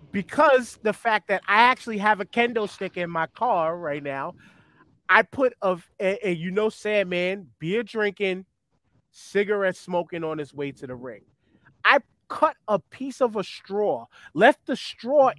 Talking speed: 170 wpm